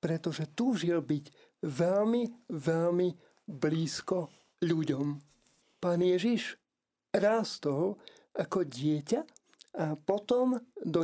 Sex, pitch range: male, 165-210 Hz